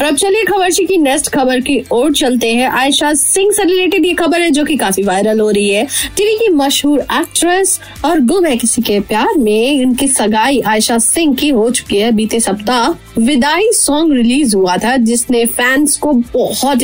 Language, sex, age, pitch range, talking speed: Hindi, female, 20-39, 245-370 Hz, 140 wpm